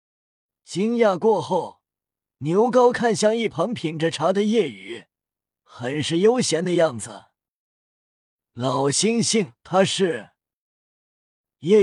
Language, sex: Chinese, male